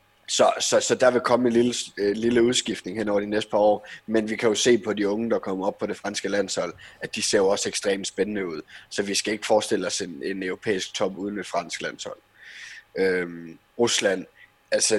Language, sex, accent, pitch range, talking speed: Danish, male, native, 100-125 Hz, 225 wpm